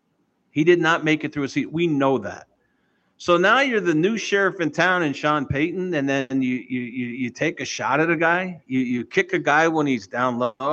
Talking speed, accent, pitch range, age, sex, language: 240 wpm, American, 135-195 Hz, 50-69, male, English